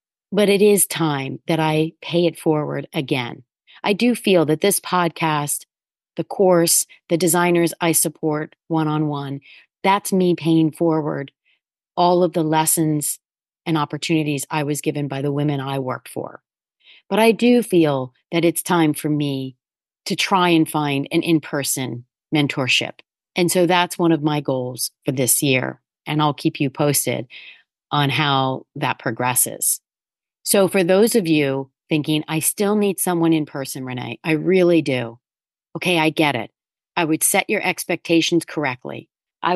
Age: 30-49